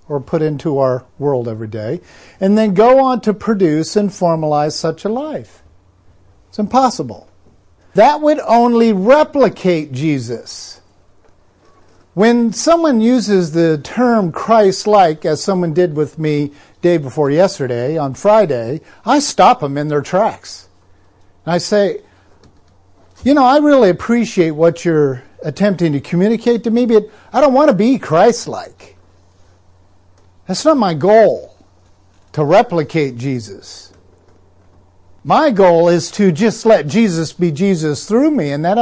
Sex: male